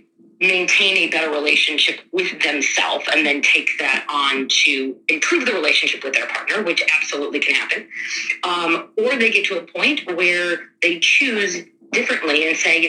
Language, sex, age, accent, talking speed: English, female, 30-49, American, 170 wpm